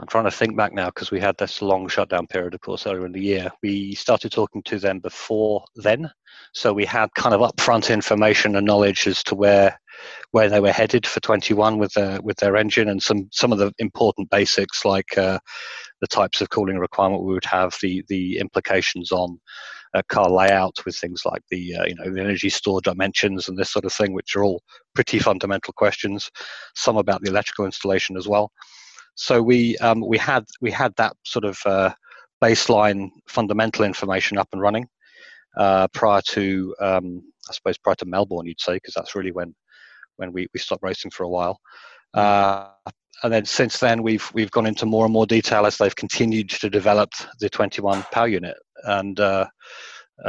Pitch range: 95-110 Hz